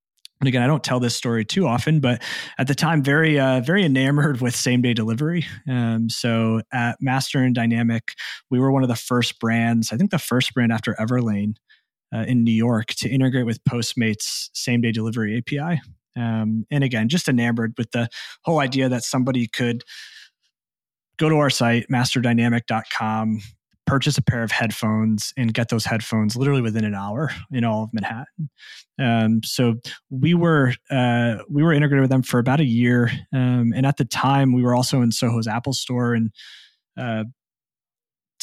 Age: 30-49